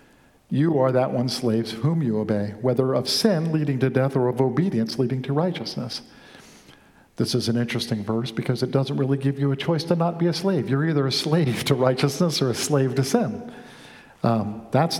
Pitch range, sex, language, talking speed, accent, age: 125-165 Hz, male, English, 205 wpm, American, 50-69